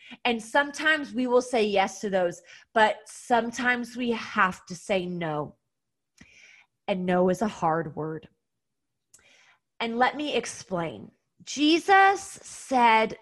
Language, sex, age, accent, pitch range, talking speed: English, female, 30-49, American, 205-295 Hz, 125 wpm